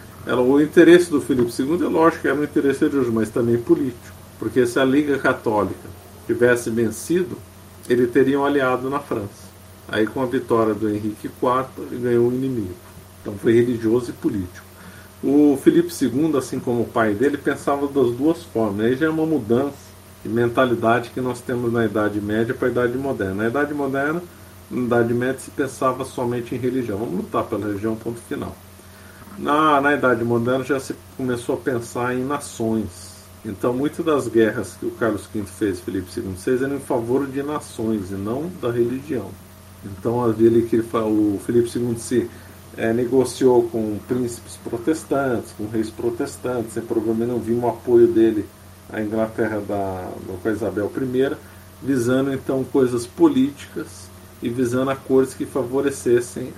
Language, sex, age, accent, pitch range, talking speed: Portuguese, male, 50-69, Brazilian, 105-130 Hz, 170 wpm